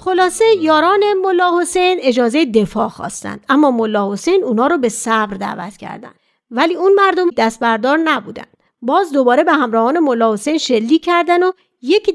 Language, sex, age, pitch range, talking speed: Persian, female, 40-59, 240-335 Hz, 145 wpm